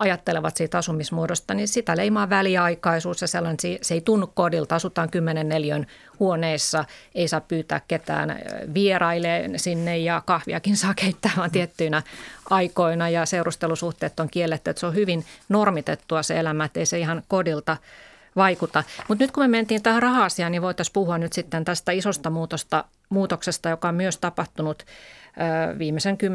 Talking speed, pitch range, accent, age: 155 wpm, 155-180 Hz, native, 30-49